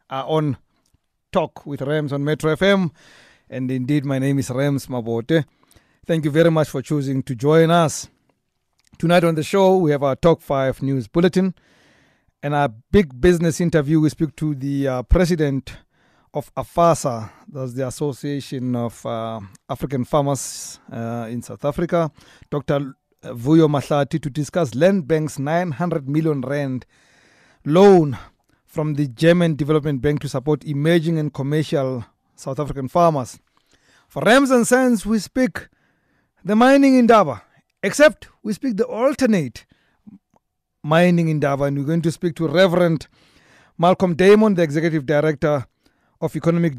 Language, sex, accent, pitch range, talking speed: English, male, South African, 140-170 Hz, 150 wpm